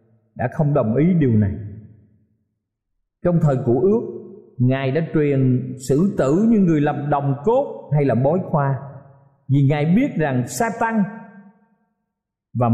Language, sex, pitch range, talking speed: Vietnamese, male, 135-180 Hz, 140 wpm